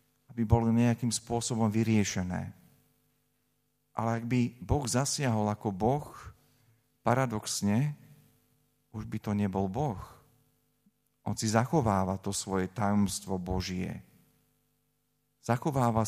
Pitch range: 100-120 Hz